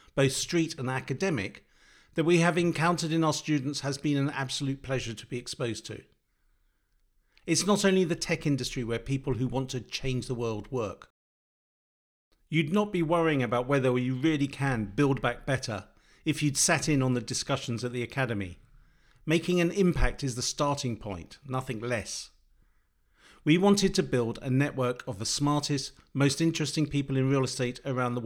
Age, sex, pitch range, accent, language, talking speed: 40-59, male, 125-160 Hz, British, English, 175 wpm